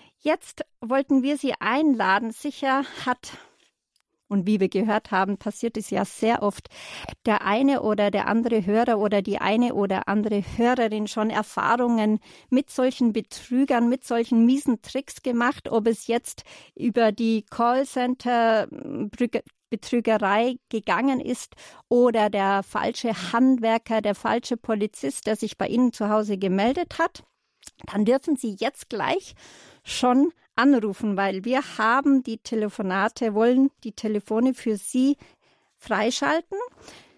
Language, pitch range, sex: German, 215-255 Hz, female